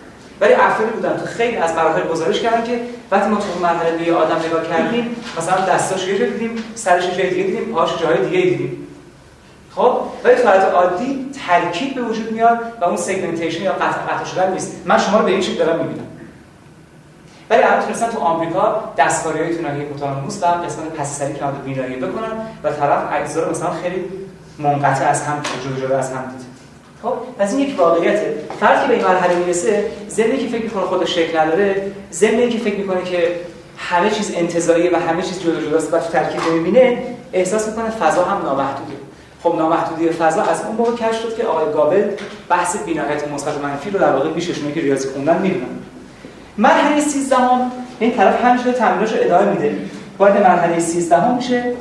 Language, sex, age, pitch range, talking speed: Persian, male, 30-49, 165-220 Hz, 165 wpm